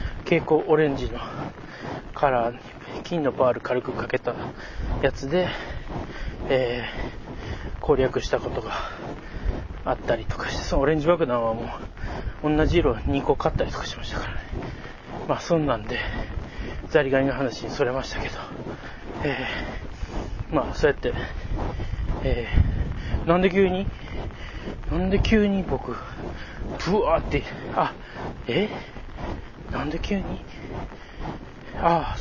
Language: Japanese